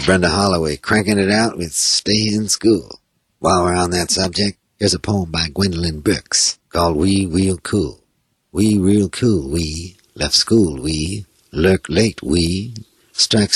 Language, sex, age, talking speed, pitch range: English, male, 50-69, 155 wpm, 85-105 Hz